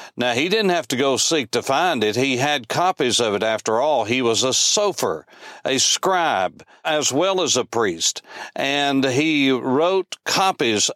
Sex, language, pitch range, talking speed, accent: male, English, 125-165 Hz, 175 wpm, American